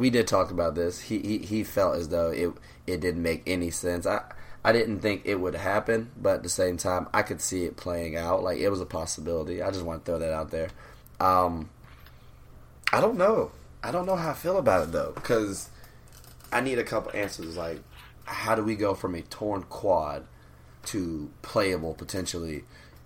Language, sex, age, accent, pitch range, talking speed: English, male, 20-39, American, 80-105 Hz, 205 wpm